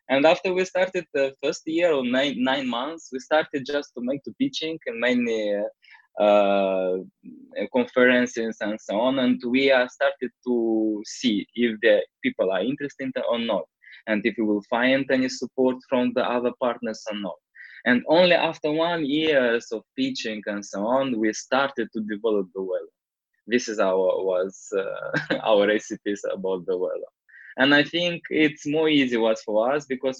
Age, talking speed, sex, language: 20-39, 175 wpm, male, English